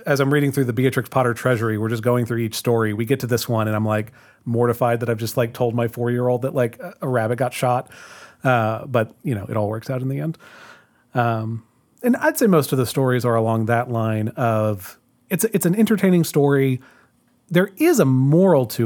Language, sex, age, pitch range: English, male, 30-49, 115-140 Hz